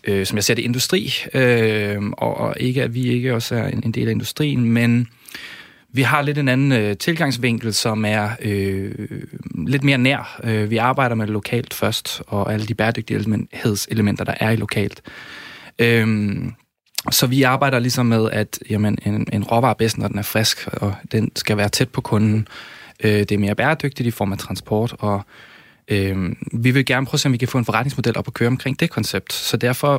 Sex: male